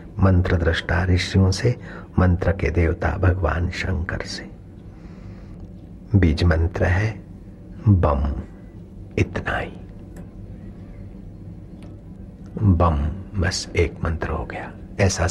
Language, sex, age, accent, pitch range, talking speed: Hindi, male, 60-79, native, 90-100 Hz, 90 wpm